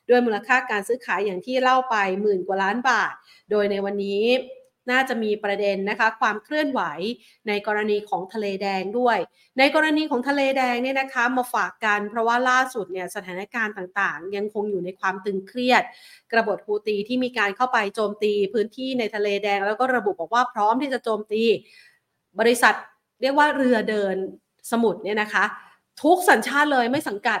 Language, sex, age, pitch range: Thai, female, 30-49, 200-250 Hz